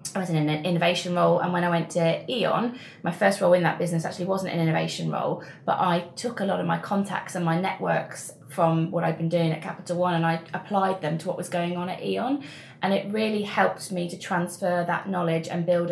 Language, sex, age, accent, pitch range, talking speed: English, female, 20-39, British, 165-185 Hz, 240 wpm